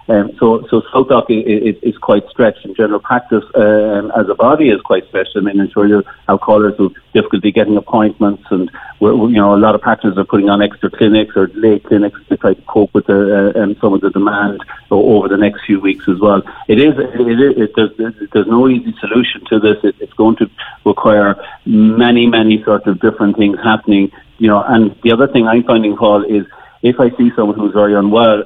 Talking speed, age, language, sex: 230 wpm, 50-69, English, male